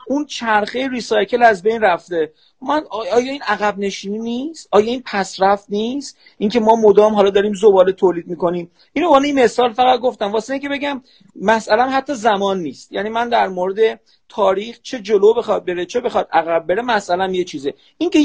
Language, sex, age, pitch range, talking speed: Persian, male, 40-59, 175-240 Hz, 185 wpm